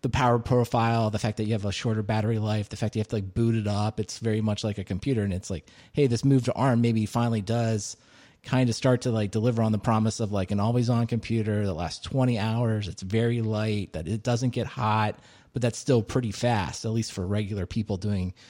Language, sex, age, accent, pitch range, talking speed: English, male, 30-49, American, 100-120 Hz, 245 wpm